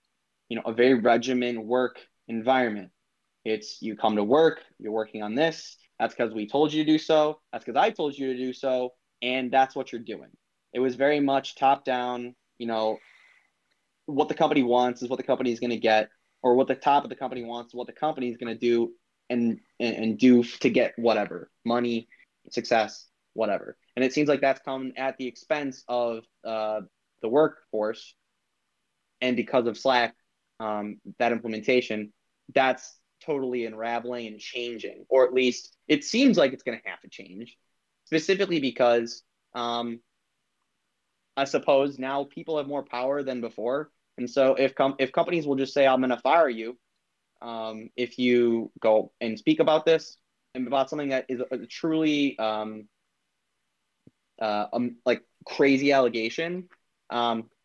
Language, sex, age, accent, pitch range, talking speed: English, male, 20-39, American, 115-140 Hz, 175 wpm